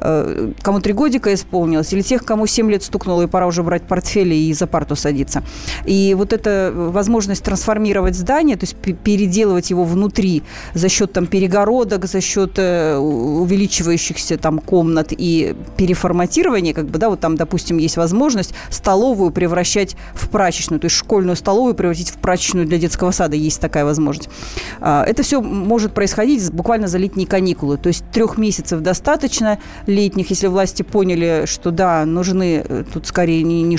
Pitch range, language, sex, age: 170-205 Hz, Russian, female, 30-49